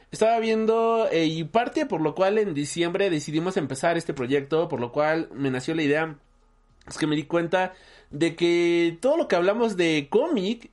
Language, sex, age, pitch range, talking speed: Spanish, male, 30-49, 150-210 Hz, 190 wpm